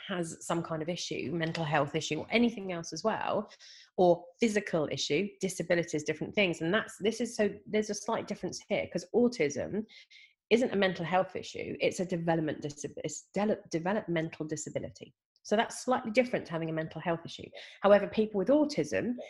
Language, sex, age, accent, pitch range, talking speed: English, female, 30-49, British, 155-195 Hz, 180 wpm